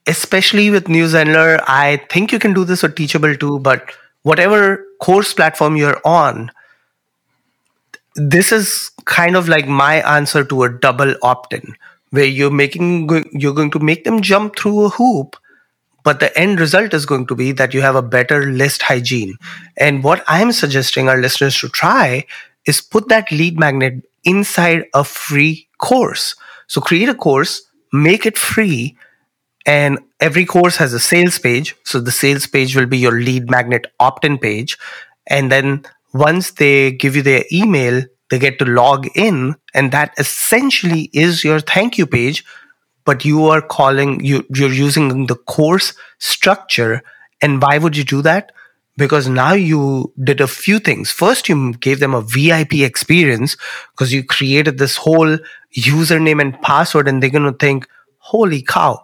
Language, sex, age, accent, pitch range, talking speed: English, male, 30-49, Indian, 135-170 Hz, 165 wpm